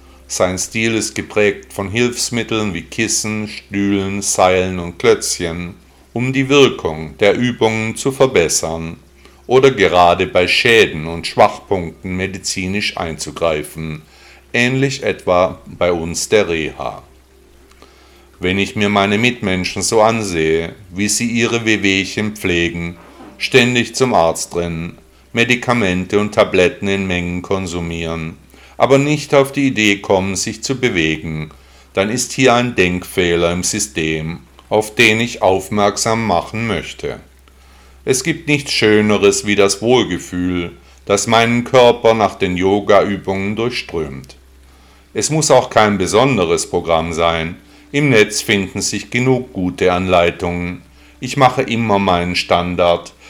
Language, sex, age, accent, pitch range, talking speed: German, male, 50-69, German, 85-115 Hz, 125 wpm